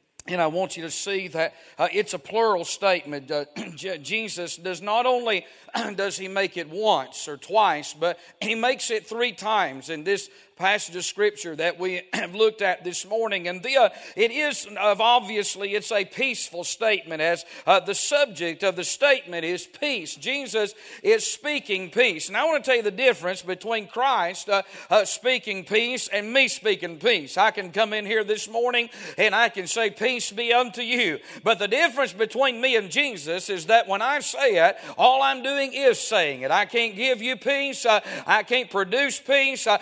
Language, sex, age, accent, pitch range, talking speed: English, male, 50-69, American, 200-275 Hz, 195 wpm